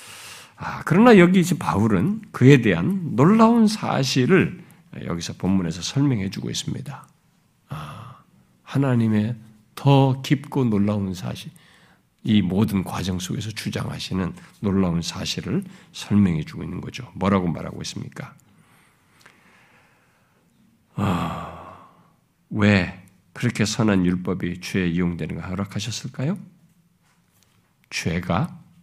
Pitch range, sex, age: 105-170 Hz, male, 50-69